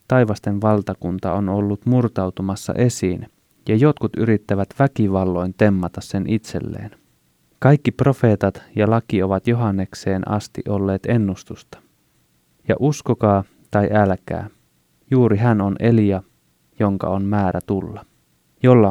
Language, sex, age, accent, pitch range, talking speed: Finnish, male, 20-39, native, 95-115 Hz, 110 wpm